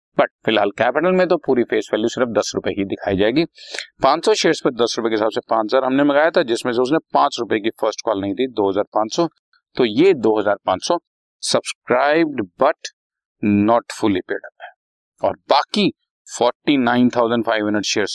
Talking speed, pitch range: 170 wpm, 100-155 Hz